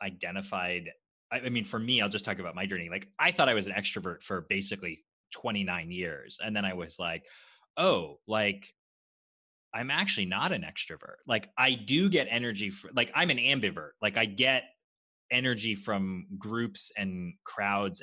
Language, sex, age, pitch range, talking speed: English, male, 20-39, 95-120 Hz, 175 wpm